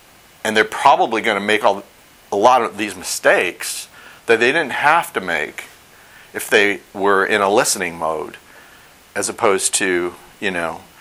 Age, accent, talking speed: 50-69, American, 165 wpm